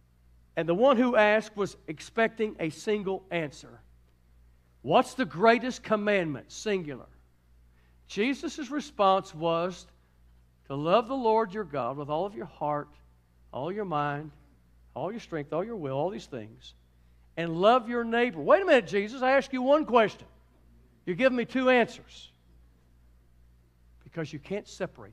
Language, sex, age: English, male, 60-79